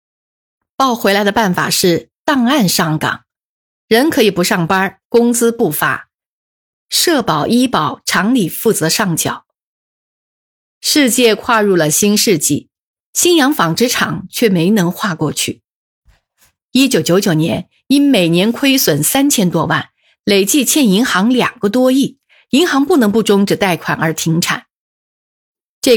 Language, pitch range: Chinese, 175-255 Hz